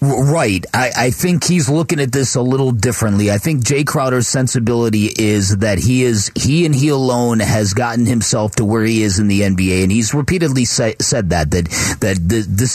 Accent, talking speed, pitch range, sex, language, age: American, 200 wpm, 110-145 Hz, male, English, 40-59